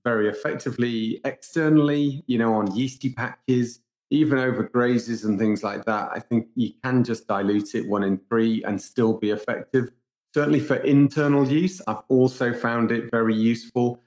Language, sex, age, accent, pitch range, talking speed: English, male, 30-49, British, 105-120 Hz, 165 wpm